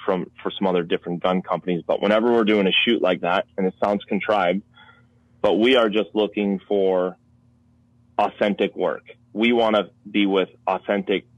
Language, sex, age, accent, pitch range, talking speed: English, male, 30-49, American, 95-115 Hz, 175 wpm